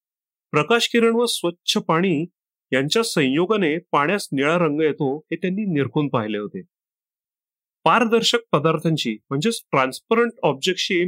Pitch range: 150-205 Hz